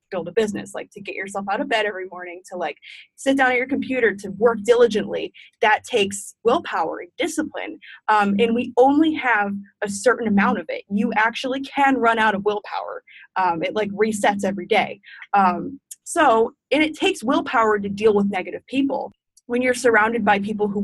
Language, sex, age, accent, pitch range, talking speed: English, female, 20-39, American, 195-255 Hz, 195 wpm